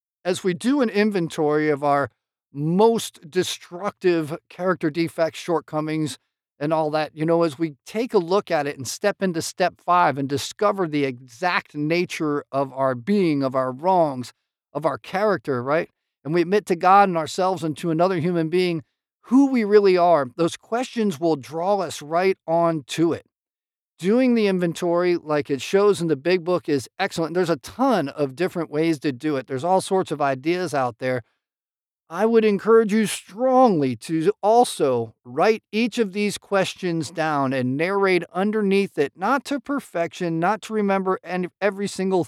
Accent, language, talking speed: American, English, 175 wpm